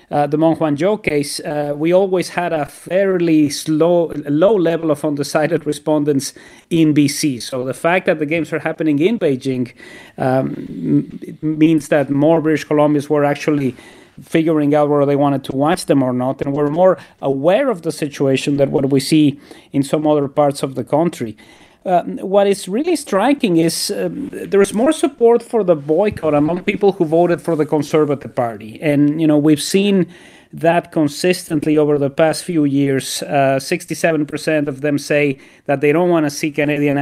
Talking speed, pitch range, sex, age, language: 180 wpm, 145-175 Hz, male, 30-49, English